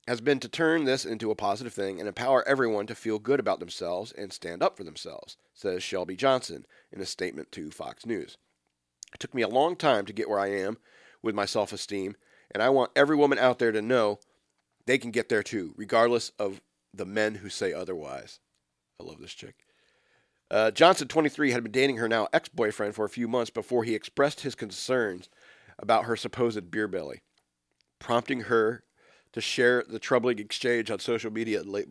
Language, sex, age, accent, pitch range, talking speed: English, male, 40-59, American, 90-120 Hz, 195 wpm